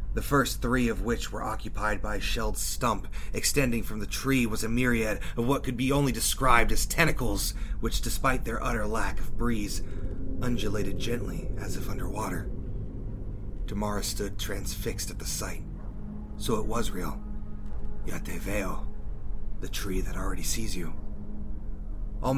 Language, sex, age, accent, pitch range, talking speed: English, male, 30-49, American, 100-115 Hz, 155 wpm